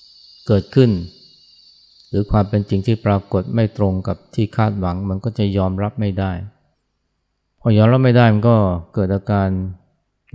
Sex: male